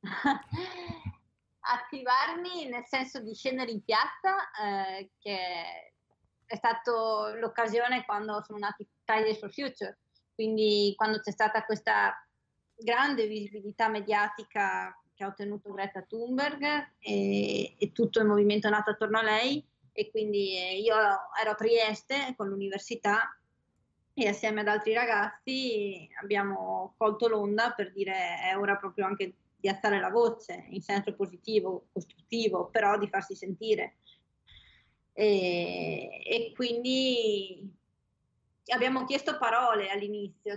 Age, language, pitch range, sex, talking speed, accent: 20-39, Italian, 205-250 Hz, female, 125 wpm, native